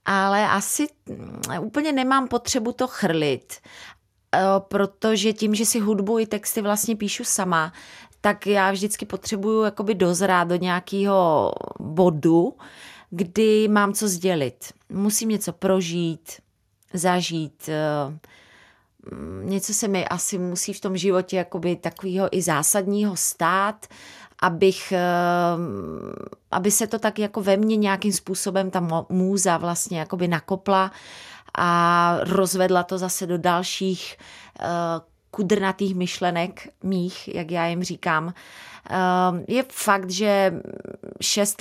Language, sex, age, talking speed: Czech, female, 30-49, 110 wpm